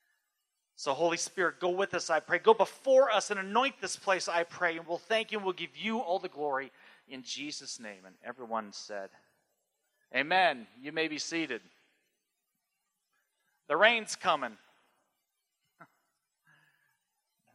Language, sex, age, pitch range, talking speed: English, male, 40-59, 130-180 Hz, 145 wpm